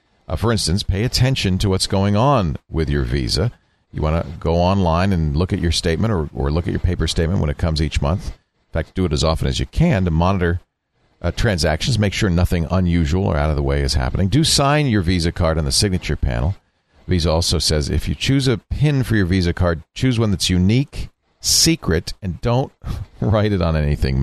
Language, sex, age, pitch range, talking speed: English, male, 50-69, 80-105 Hz, 225 wpm